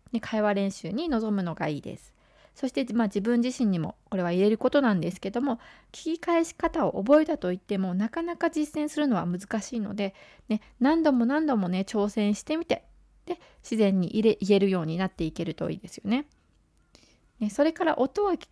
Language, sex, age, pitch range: Japanese, female, 20-39, 190-275 Hz